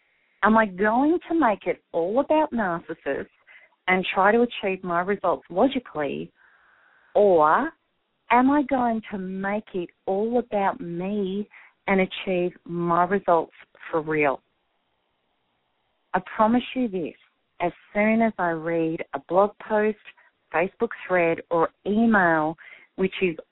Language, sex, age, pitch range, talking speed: English, female, 40-59, 175-230 Hz, 130 wpm